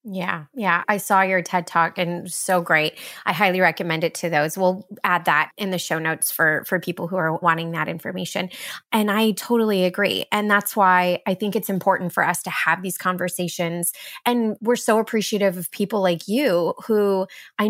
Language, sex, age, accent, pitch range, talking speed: English, female, 20-39, American, 175-210 Hz, 195 wpm